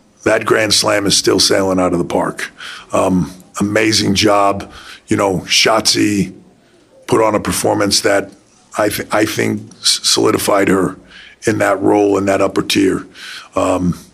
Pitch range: 95-105 Hz